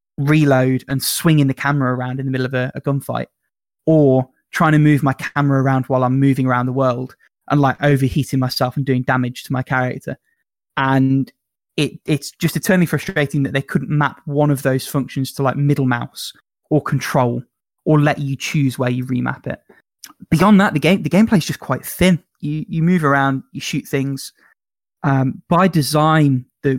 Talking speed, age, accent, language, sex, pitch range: 190 wpm, 20-39, British, English, male, 130-155 Hz